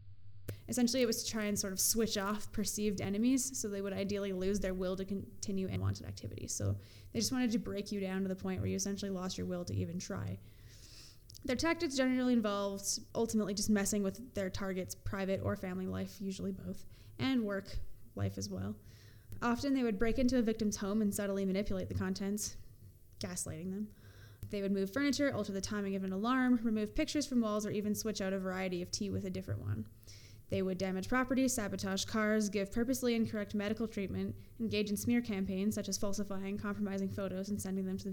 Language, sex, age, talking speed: English, female, 10-29, 205 wpm